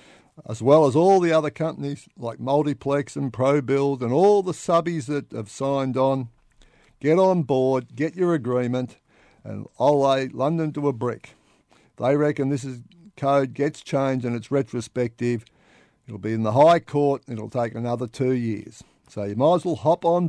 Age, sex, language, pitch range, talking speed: 50-69, male, English, 115-140 Hz, 175 wpm